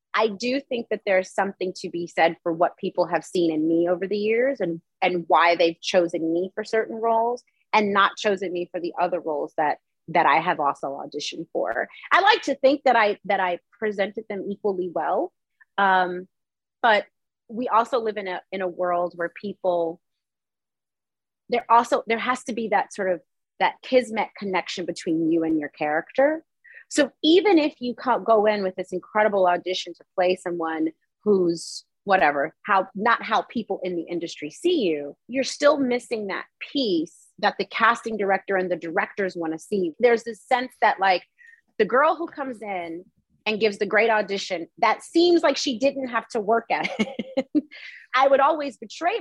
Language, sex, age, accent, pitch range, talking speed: English, female, 30-49, American, 175-240 Hz, 185 wpm